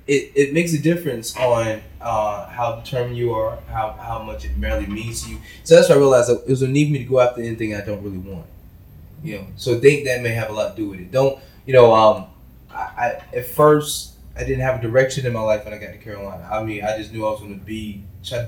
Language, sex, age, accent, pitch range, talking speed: English, male, 20-39, American, 110-135 Hz, 275 wpm